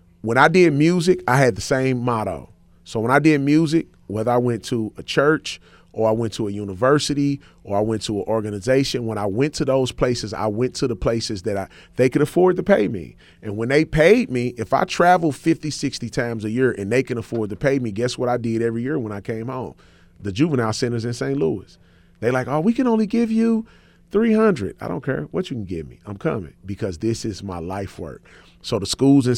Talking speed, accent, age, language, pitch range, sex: 235 wpm, American, 30-49, English, 105-140 Hz, male